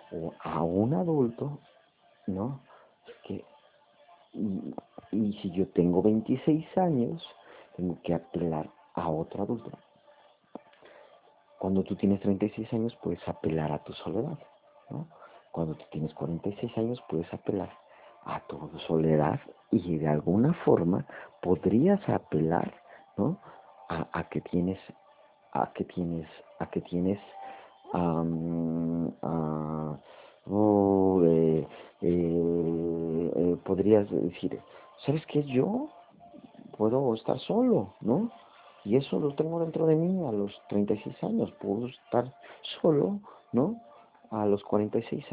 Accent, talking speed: Mexican, 120 wpm